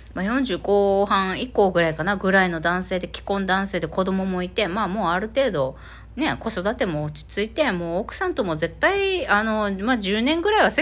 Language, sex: Japanese, female